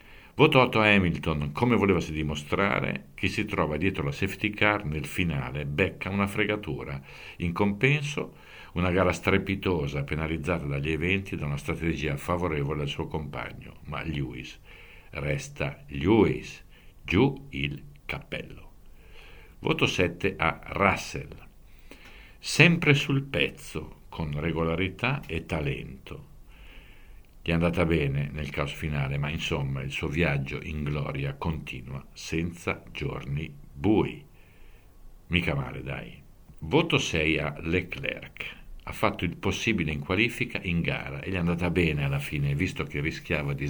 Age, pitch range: 60-79, 75-95 Hz